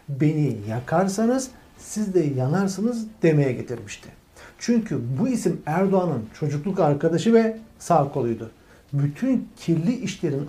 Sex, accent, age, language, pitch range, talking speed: male, native, 60-79, Turkish, 150-225 Hz, 105 wpm